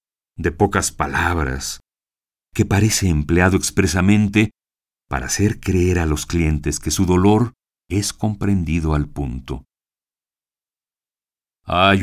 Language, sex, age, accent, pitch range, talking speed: Spanish, male, 50-69, Mexican, 75-100 Hz, 105 wpm